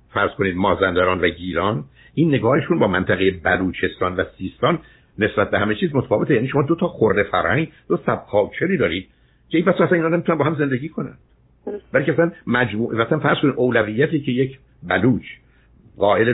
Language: Persian